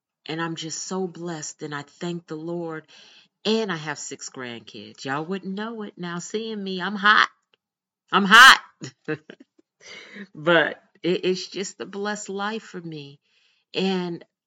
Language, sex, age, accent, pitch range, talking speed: English, female, 50-69, American, 135-180 Hz, 145 wpm